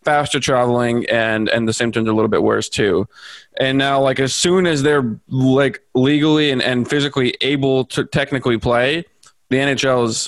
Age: 20-39